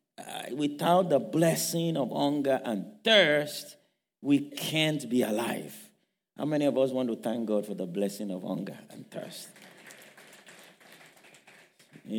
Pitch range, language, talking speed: 125-175 Hz, English, 140 wpm